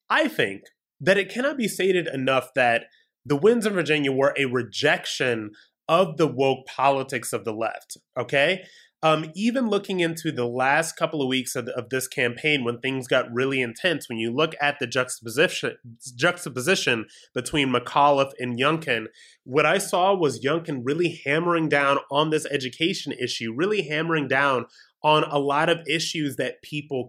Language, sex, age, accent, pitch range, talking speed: English, male, 30-49, American, 130-170 Hz, 170 wpm